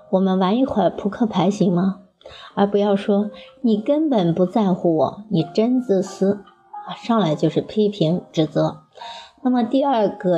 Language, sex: Chinese, male